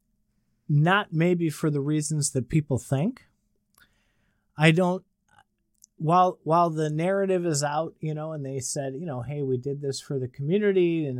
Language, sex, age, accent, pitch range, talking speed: English, male, 30-49, American, 130-160 Hz, 165 wpm